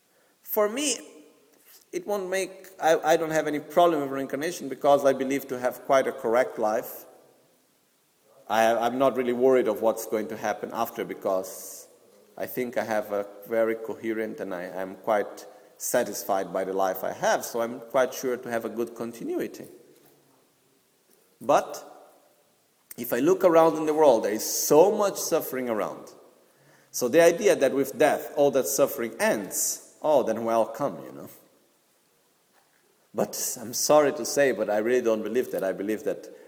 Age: 40-59